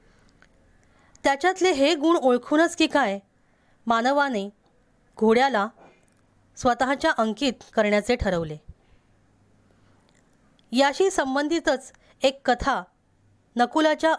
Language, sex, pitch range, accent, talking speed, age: Marathi, female, 210-275 Hz, native, 70 wpm, 20-39